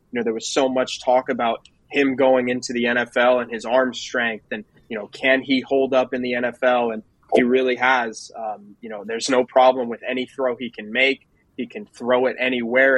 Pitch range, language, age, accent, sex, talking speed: 120-130 Hz, English, 20-39, American, male, 220 wpm